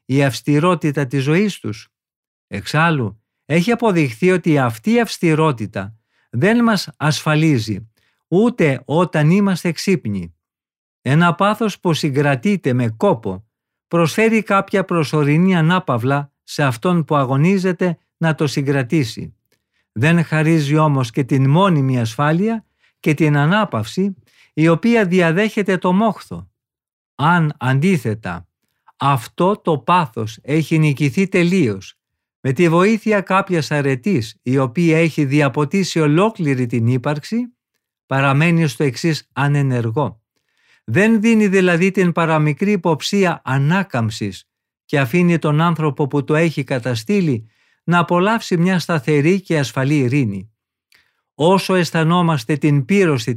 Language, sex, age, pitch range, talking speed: Greek, male, 50-69, 135-180 Hz, 115 wpm